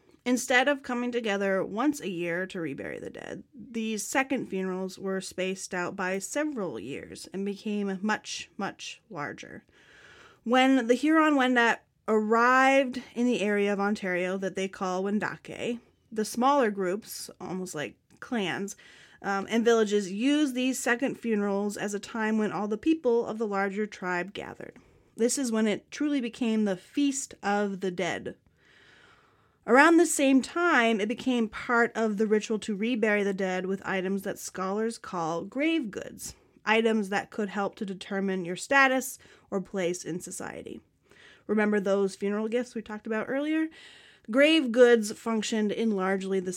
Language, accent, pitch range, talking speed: English, American, 195-245 Hz, 155 wpm